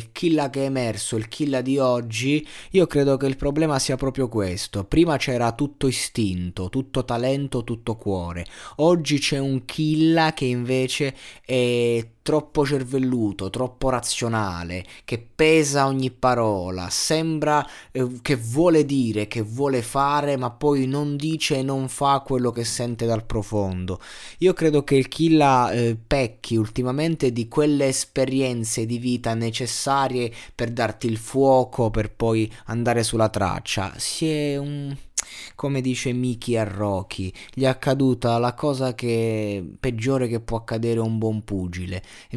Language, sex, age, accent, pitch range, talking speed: Italian, male, 20-39, native, 105-135 Hz, 150 wpm